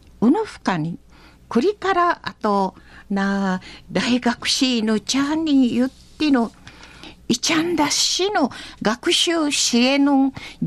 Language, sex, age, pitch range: Japanese, female, 50-69, 220-315 Hz